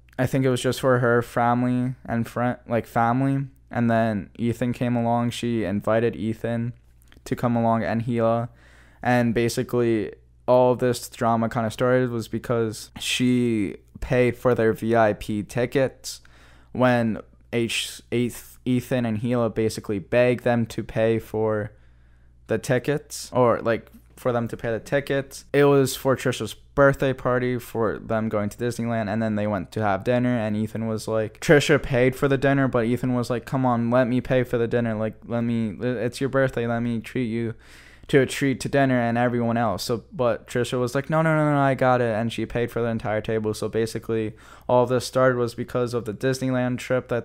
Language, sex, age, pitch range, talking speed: English, male, 10-29, 110-125 Hz, 190 wpm